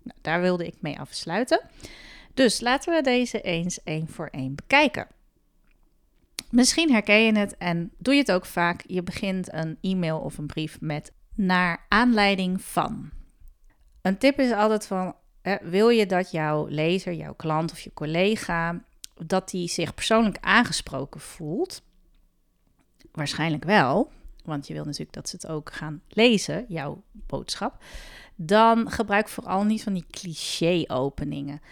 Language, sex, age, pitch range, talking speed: Dutch, female, 30-49, 150-205 Hz, 145 wpm